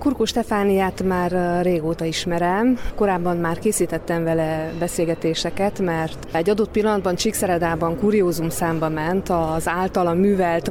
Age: 30-49